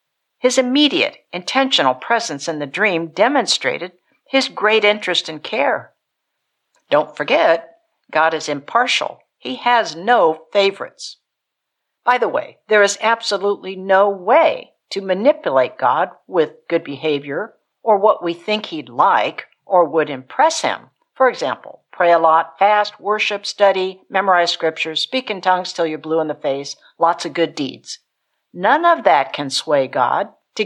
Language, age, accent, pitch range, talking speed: English, 60-79, American, 165-255 Hz, 150 wpm